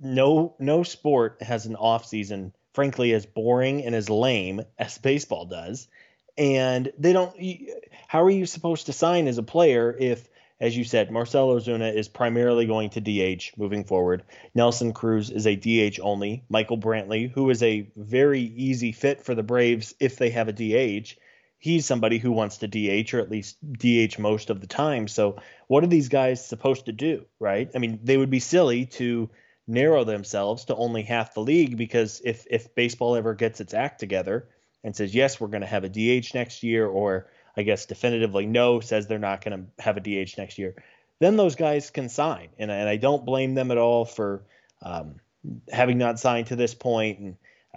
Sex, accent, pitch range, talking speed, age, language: male, American, 110-130 Hz, 200 wpm, 30-49, English